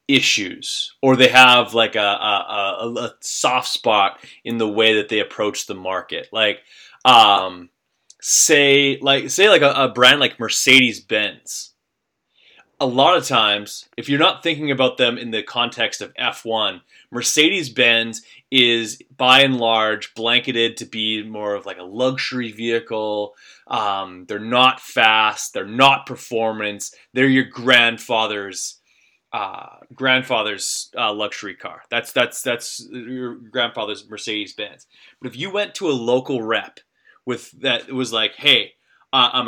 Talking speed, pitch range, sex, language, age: 150 wpm, 110-130 Hz, male, English, 20-39